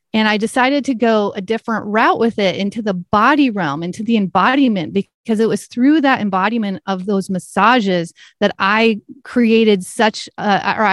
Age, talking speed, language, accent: 30-49, 170 wpm, English, American